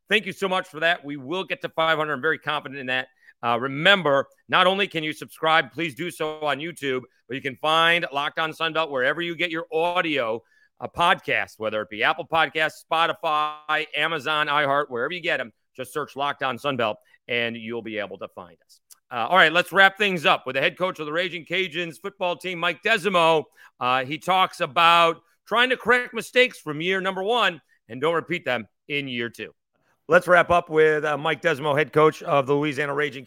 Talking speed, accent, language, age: 210 wpm, American, English, 40-59